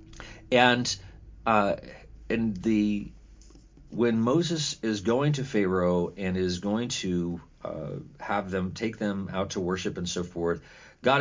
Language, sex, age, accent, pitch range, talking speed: English, male, 40-59, American, 85-110 Hz, 140 wpm